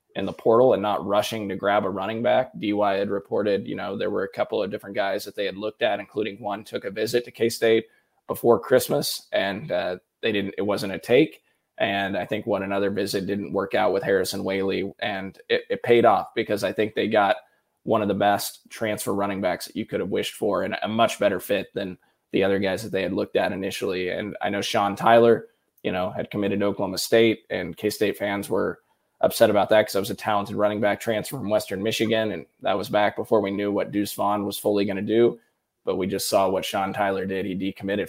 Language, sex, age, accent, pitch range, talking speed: English, male, 20-39, American, 100-125 Hz, 235 wpm